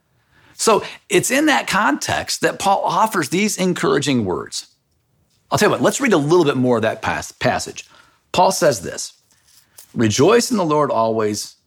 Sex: male